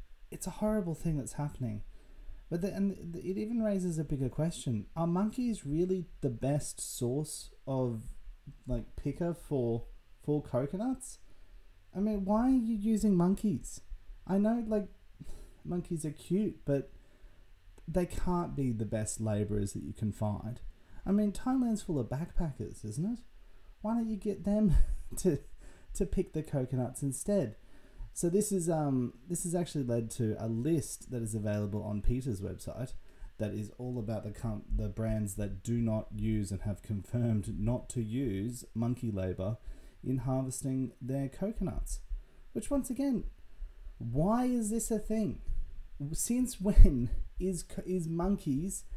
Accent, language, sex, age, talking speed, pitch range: Australian, English, male, 30-49, 150 wpm, 110-180 Hz